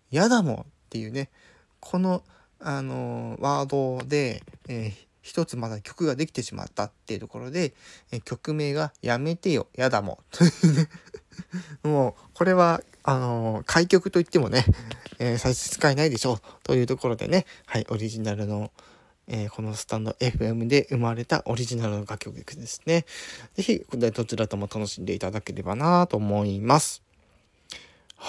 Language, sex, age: Japanese, male, 20-39